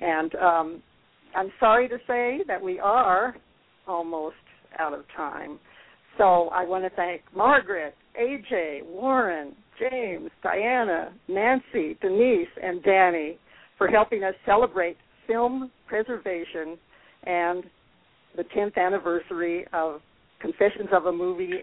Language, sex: English, female